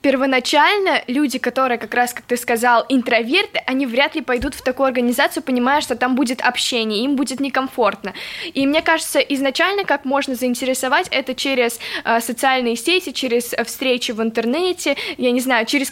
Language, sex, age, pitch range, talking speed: Russian, female, 10-29, 240-280 Hz, 165 wpm